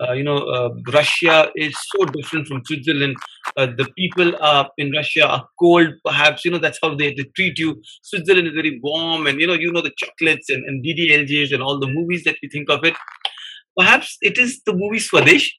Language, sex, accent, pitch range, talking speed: Hindi, male, native, 145-200 Hz, 215 wpm